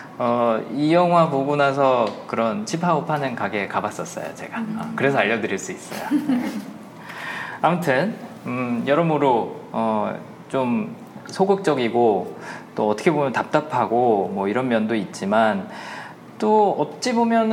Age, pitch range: 20-39, 125-190 Hz